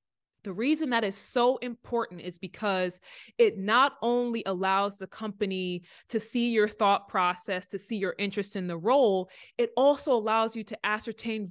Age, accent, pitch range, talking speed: 20-39, American, 195-245 Hz, 165 wpm